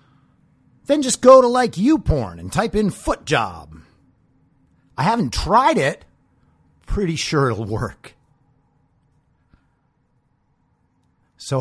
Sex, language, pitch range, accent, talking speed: male, English, 110-155 Hz, American, 110 wpm